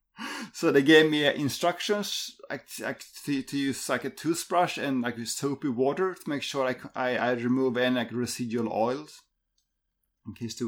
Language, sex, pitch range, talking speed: English, male, 120-160 Hz, 140 wpm